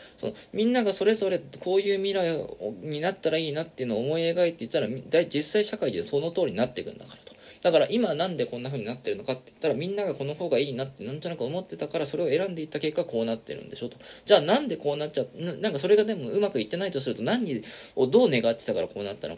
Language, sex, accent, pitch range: Japanese, male, native, 135-200 Hz